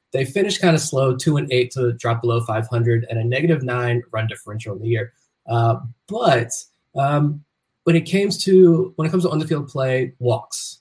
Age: 20-39